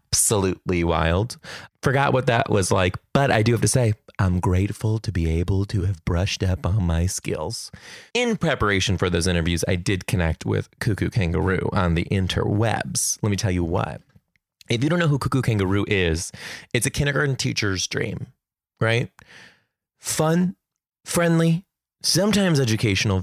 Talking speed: 160 wpm